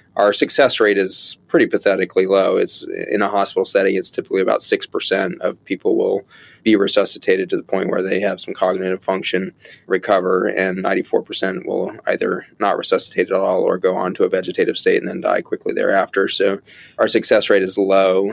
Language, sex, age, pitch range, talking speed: English, male, 20-39, 95-115 Hz, 185 wpm